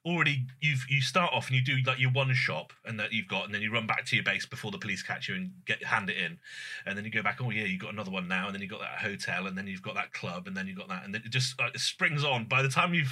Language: English